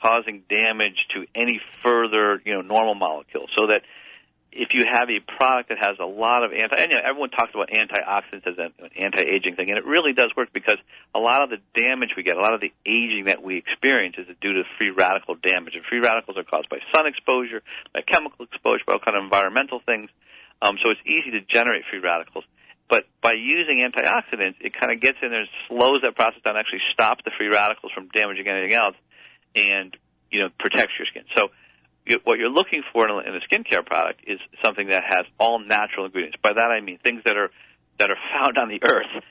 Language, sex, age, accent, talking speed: English, male, 50-69, American, 220 wpm